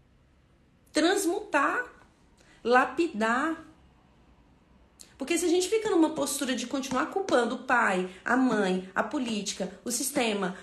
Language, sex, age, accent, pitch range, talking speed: Portuguese, female, 40-59, Brazilian, 195-280 Hz, 115 wpm